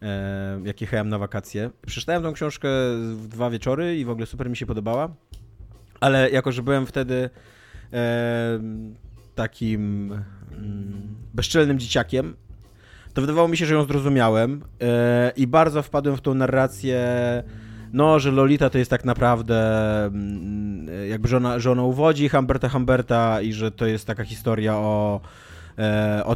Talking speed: 140 wpm